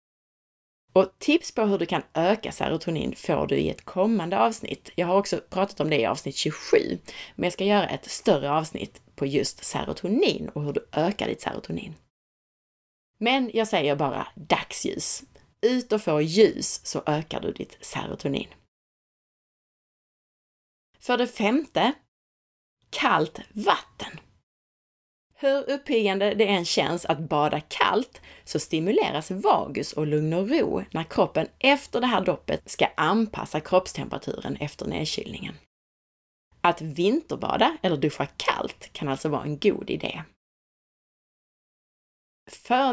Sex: female